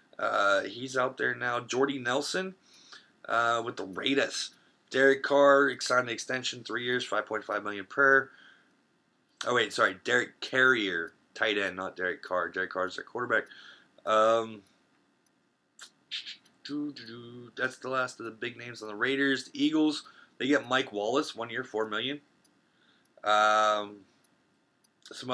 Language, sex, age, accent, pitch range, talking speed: English, male, 20-39, American, 115-145 Hz, 135 wpm